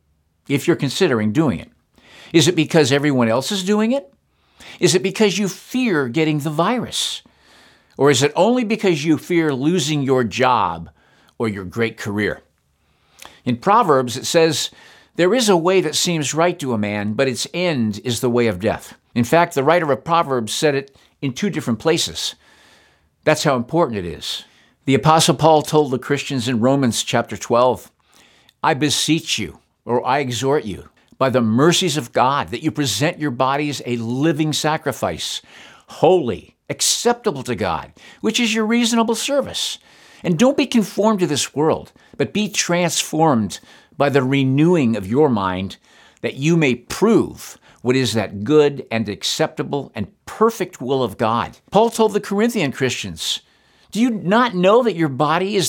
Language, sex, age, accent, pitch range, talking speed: English, male, 50-69, American, 120-175 Hz, 170 wpm